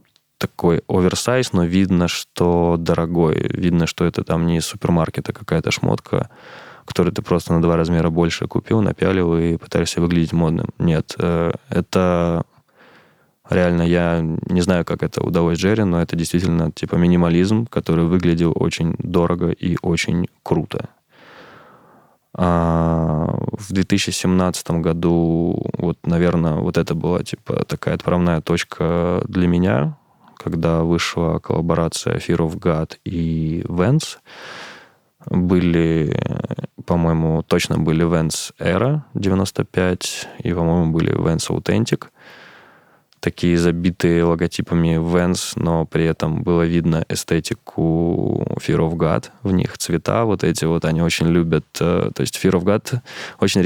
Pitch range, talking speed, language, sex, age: 85-90 Hz, 125 wpm, Russian, male, 20-39